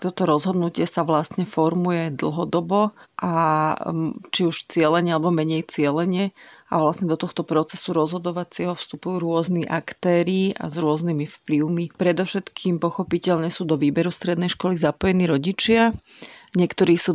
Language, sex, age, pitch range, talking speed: Slovak, female, 30-49, 155-180 Hz, 130 wpm